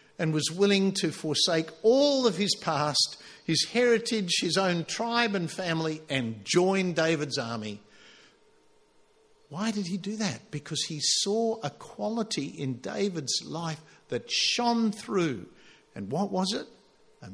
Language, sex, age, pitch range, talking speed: English, male, 50-69, 135-200 Hz, 140 wpm